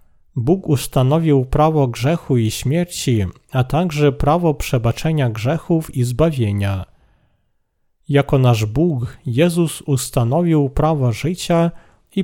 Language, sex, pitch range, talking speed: Polish, male, 120-160 Hz, 105 wpm